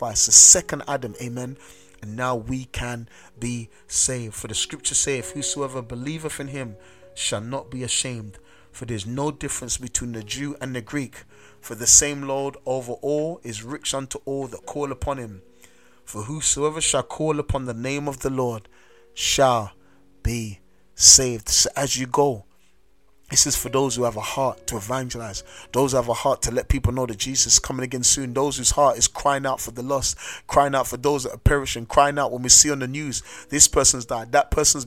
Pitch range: 120-145 Hz